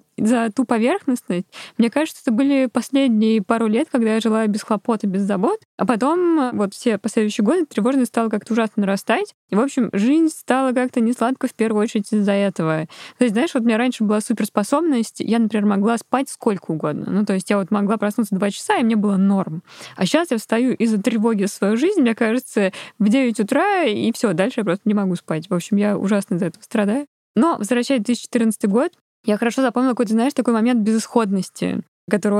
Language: Russian